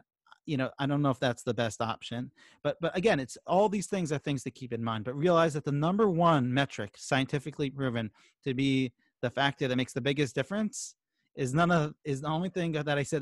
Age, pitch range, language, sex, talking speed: 30-49, 125-165 Hz, English, male, 230 wpm